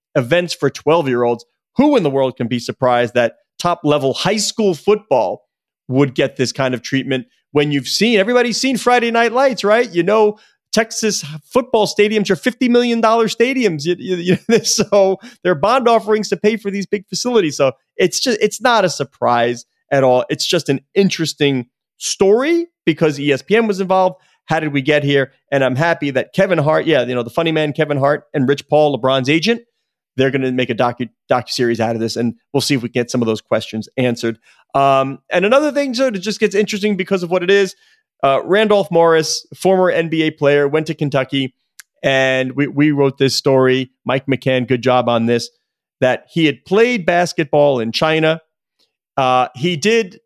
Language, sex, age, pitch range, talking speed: English, male, 30-49, 135-205 Hz, 200 wpm